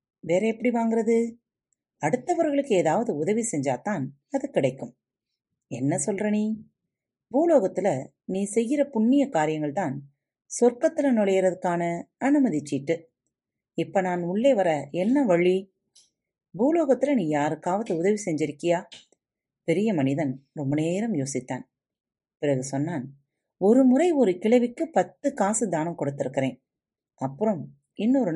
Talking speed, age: 105 wpm, 30-49